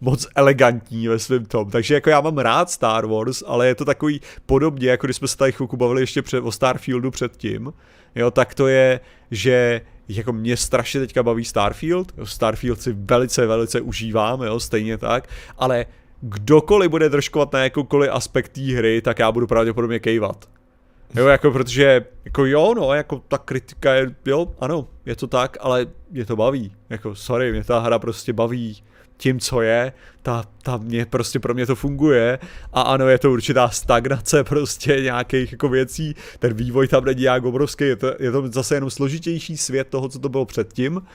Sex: male